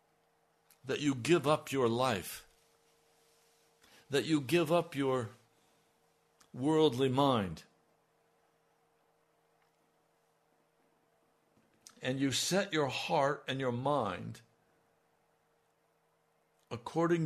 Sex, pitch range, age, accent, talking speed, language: male, 110-140 Hz, 60-79, American, 75 wpm, English